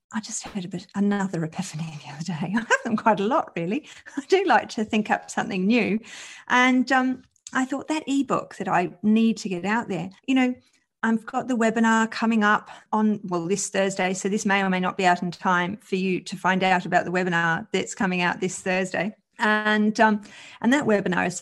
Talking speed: 220 wpm